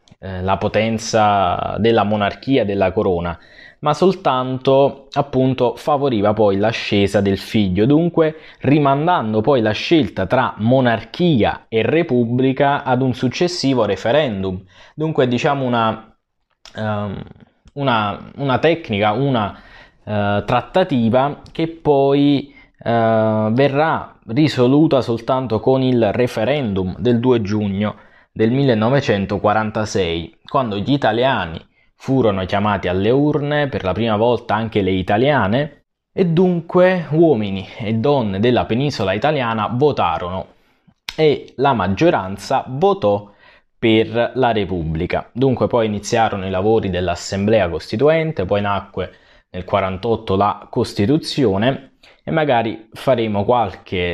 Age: 20-39